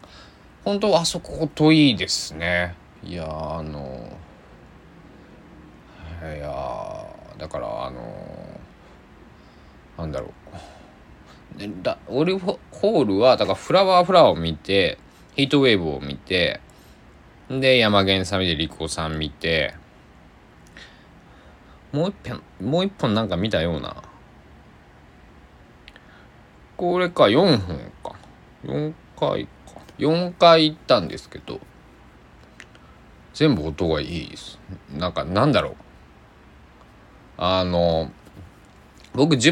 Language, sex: Japanese, male